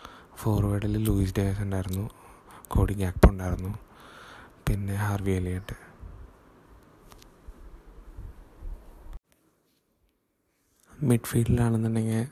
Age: 20-39